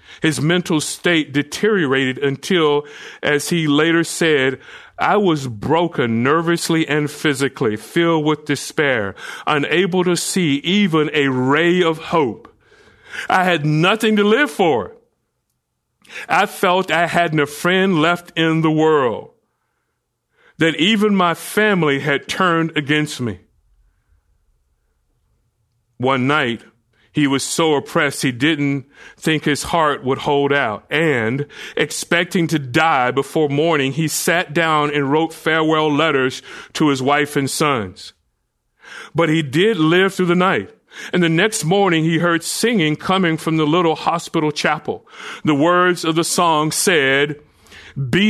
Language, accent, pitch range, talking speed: English, American, 140-175 Hz, 135 wpm